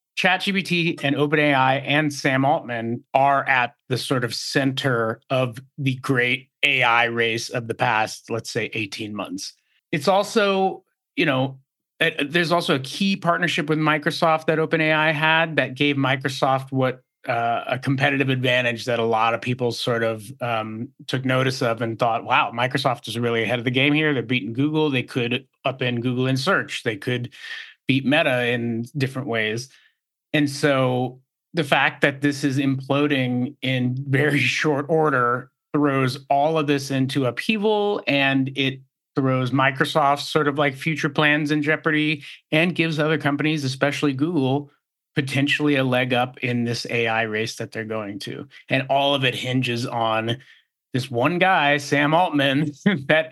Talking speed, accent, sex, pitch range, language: 160 wpm, American, male, 125-150 Hz, English